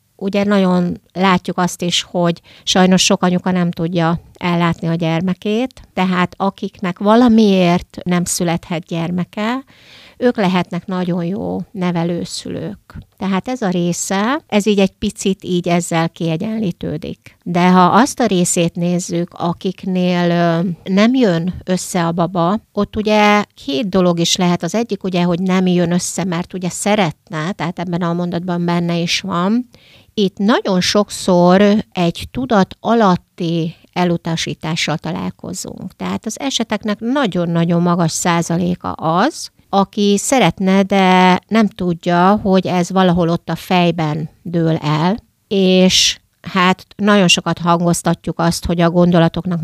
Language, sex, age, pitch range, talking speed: Hungarian, female, 60-79, 170-195 Hz, 130 wpm